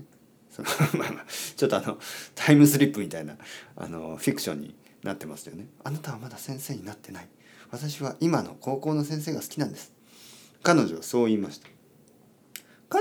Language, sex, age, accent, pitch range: Japanese, male, 40-59, native, 100-160 Hz